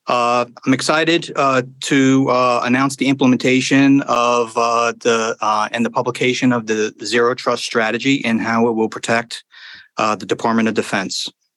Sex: male